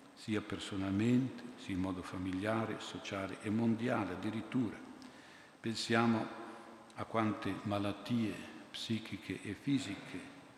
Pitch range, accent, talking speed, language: 95-105 Hz, native, 95 wpm, Italian